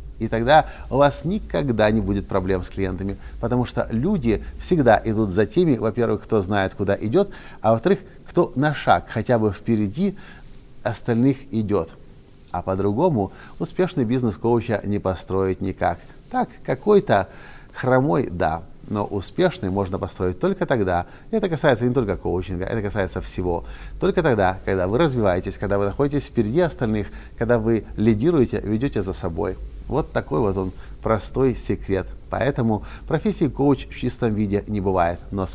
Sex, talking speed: male, 155 wpm